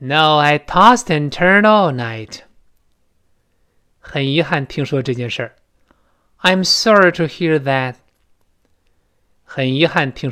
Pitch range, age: 120-185 Hz, 20-39